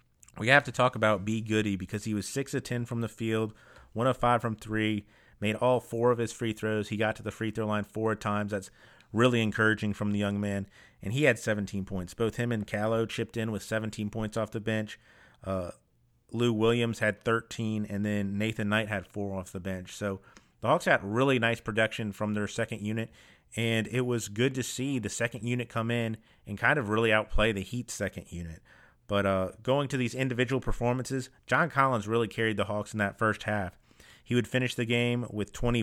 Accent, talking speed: American, 215 wpm